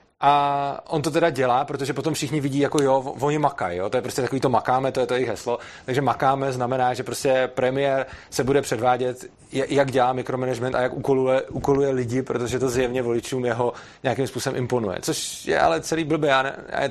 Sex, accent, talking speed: male, native, 200 wpm